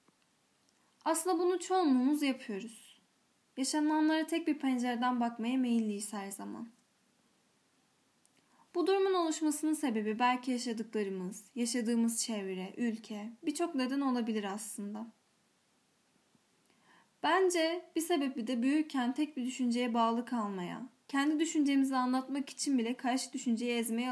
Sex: female